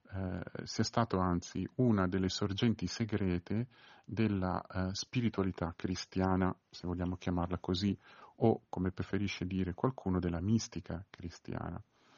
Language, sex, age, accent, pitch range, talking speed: Italian, male, 40-59, native, 90-110 Hz, 110 wpm